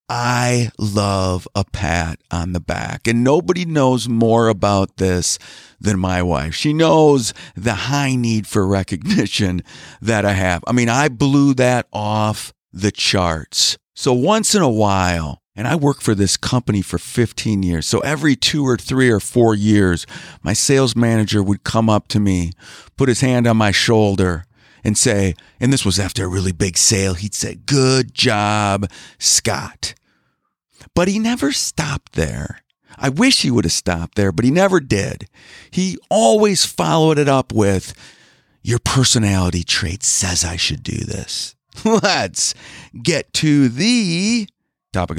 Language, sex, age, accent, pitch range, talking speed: English, male, 50-69, American, 95-130 Hz, 160 wpm